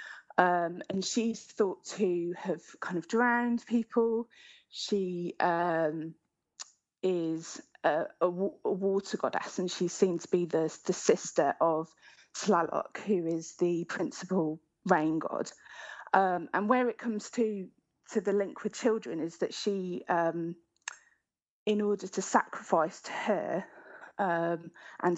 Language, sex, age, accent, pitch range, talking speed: English, female, 20-39, British, 170-215 Hz, 135 wpm